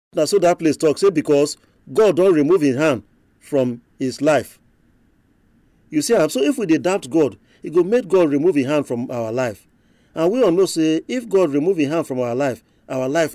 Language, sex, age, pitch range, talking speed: English, male, 40-59, 125-190 Hz, 215 wpm